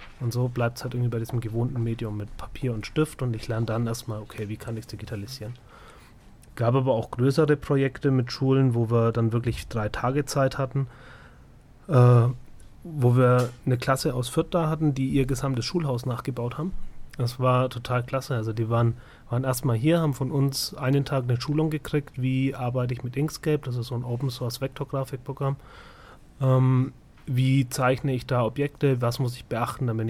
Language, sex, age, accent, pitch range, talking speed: German, male, 30-49, German, 120-140 Hz, 195 wpm